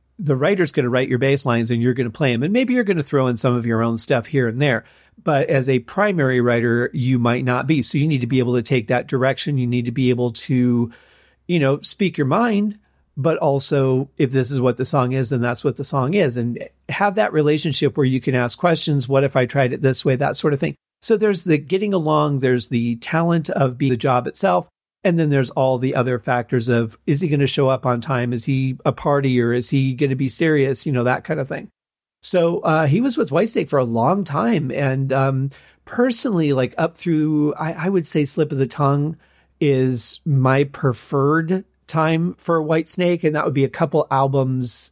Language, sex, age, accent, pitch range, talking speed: English, male, 40-59, American, 125-155 Hz, 240 wpm